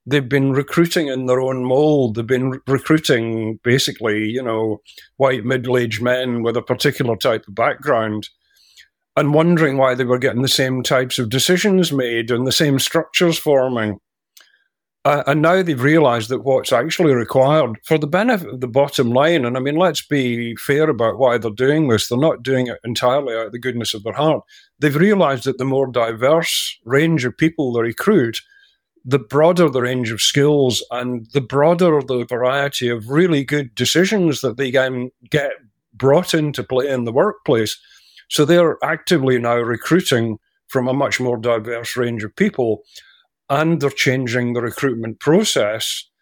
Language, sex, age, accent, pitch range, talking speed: English, male, 50-69, British, 120-150 Hz, 170 wpm